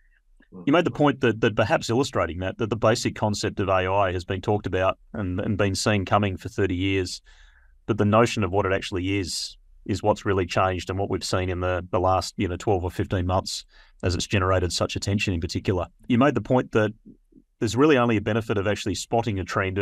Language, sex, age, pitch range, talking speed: English, male, 30-49, 95-110 Hz, 225 wpm